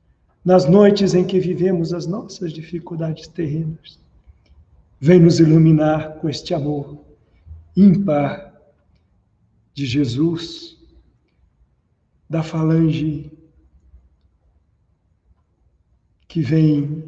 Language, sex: Portuguese, male